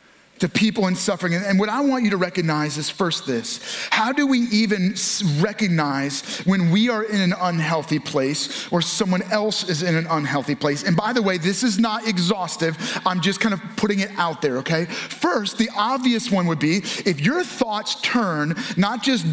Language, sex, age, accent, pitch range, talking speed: English, male, 30-49, American, 180-240 Hz, 195 wpm